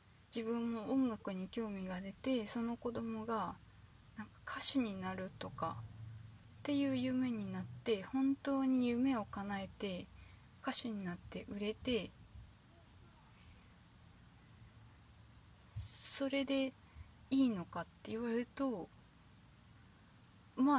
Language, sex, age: Japanese, female, 20-39